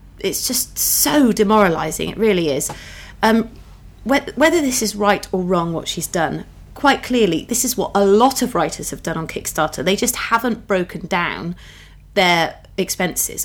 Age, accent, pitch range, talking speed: 30-49, British, 170-225 Hz, 165 wpm